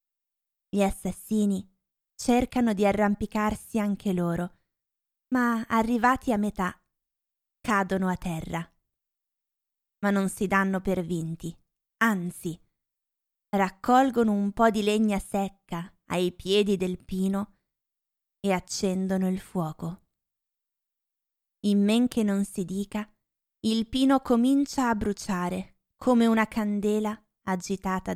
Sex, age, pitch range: female, 20-39, 190-225 Hz